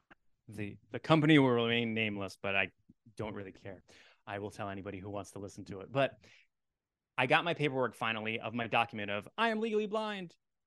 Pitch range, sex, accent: 105-140 Hz, male, American